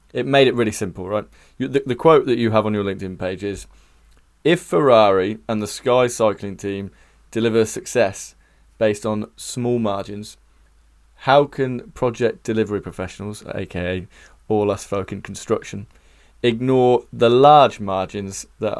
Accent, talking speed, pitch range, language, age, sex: British, 145 wpm, 100-125 Hz, English, 20-39, male